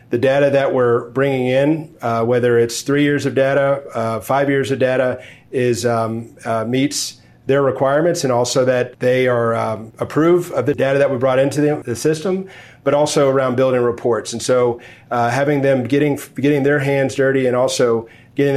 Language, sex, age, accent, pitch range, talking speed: English, male, 40-59, American, 120-135 Hz, 190 wpm